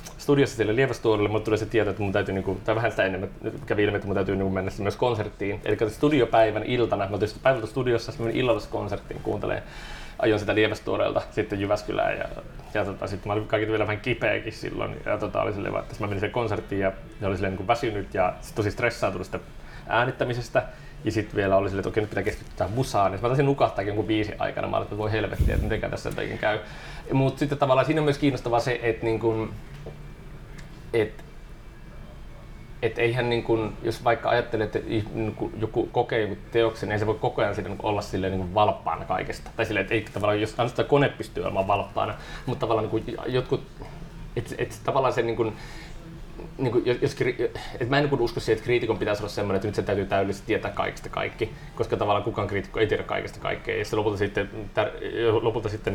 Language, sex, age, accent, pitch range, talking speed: Finnish, male, 30-49, native, 105-120 Hz, 180 wpm